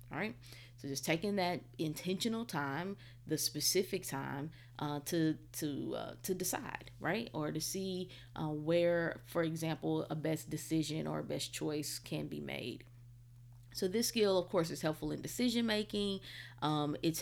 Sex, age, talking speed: female, 30-49, 160 wpm